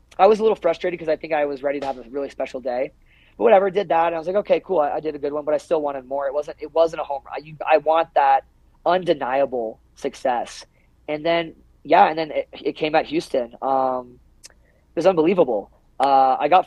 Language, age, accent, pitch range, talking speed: English, 20-39, American, 130-165 Hz, 245 wpm